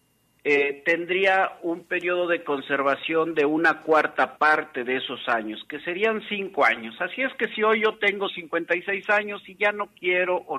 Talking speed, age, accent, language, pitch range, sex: 175 wpm, 50-69, Mexican, Spanish, 135-185 Hz, male